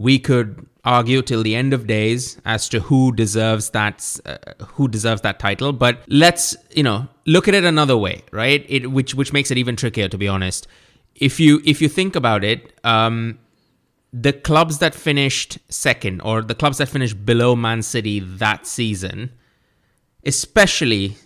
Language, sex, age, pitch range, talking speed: English, male, 20-39, 110-135 Hz, 175 wpm